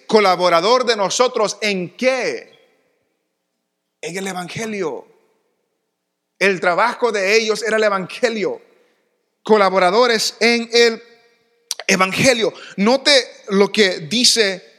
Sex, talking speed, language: male, 95 wpm, English